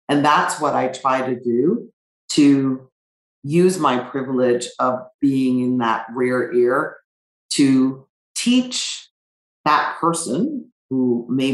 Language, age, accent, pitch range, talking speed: English, 40-59, American, 120-140 Hz, 120 wpm